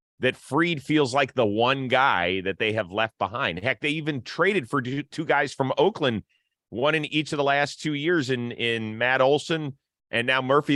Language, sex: English, male